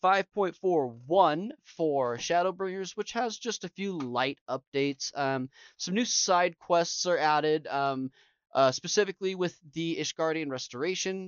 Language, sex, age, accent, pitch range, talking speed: English, male, 20-39, American, 135-175 Hz, 130 wpm